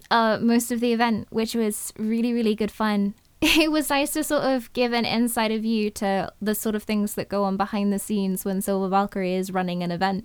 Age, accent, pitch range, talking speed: 10-29, British, 210-260 Hz, 230 wpm